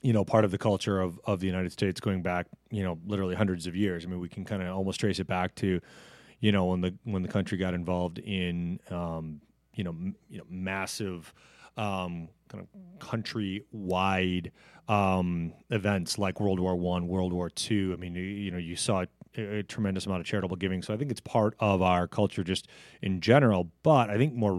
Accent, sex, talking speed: American, male, 215 wpm